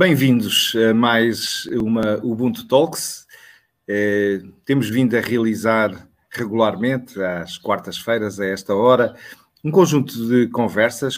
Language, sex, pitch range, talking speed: Portuguese, male, 110-135 Hz, 105 wpm